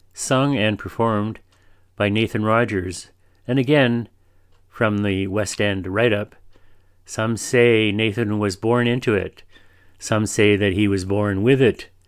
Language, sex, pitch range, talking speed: English, male, 95-115 Hz, 140 wpm